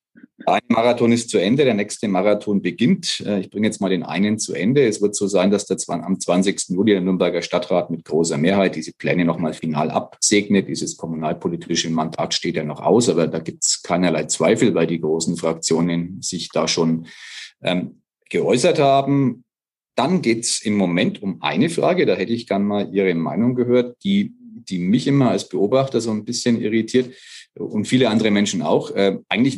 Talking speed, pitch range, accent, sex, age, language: 185 wpm, 85-120 Hz, German, male, 40-59, German